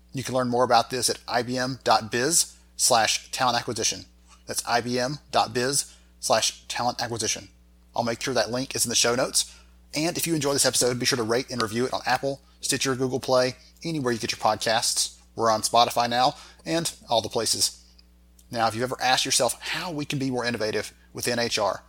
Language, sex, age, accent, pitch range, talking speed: English, male, 30-49, American, 105-125 Hz, 190 wpm